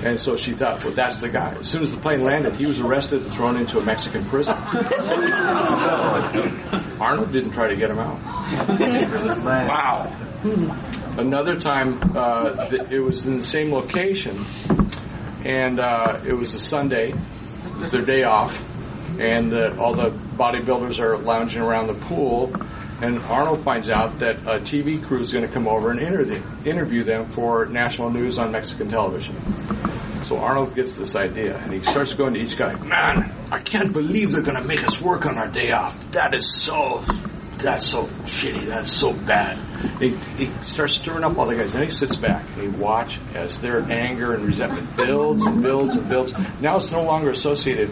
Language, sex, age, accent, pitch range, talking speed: English, male, 50-69, American, 115-150 Hz, 185 wpm